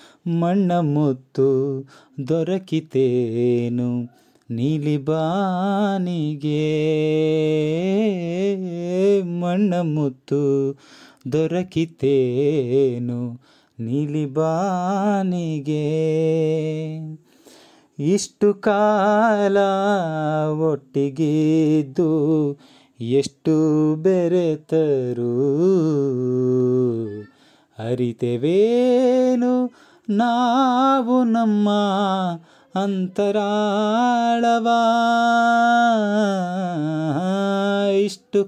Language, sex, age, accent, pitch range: Kannada, male, 30-49, native, 150-205 Hz